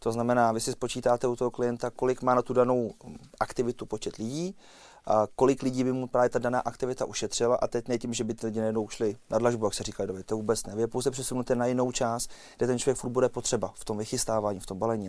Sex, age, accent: male, 30-49, native